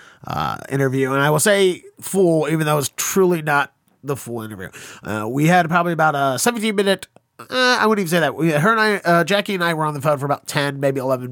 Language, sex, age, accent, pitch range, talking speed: English, male, 30-49, American, 125-160 Hz, 245 wpm